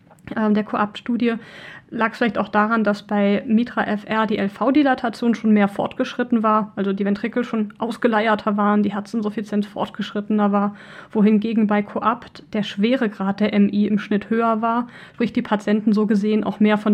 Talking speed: 165 wpm